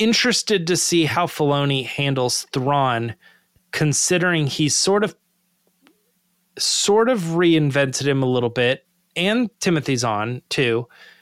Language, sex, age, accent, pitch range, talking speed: English, male, 20-39, American, 130-180 Hz, 120 wpm